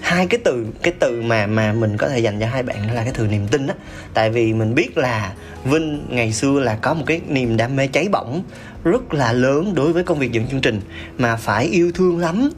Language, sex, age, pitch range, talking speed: Vietnamese, male, 20-39, 110-145 Hz, 250 wpm